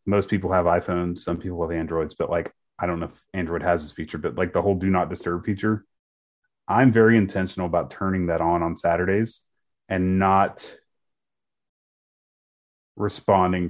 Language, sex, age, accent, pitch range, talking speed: English, male, 30-49, American, 85-105 Hz, 165 wpm